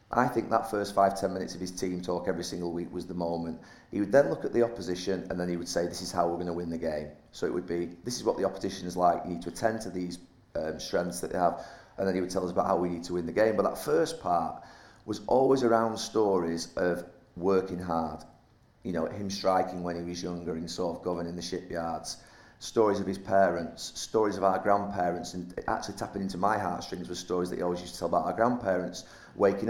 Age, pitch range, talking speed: 30-49, 85-100 Hz, 255 wpm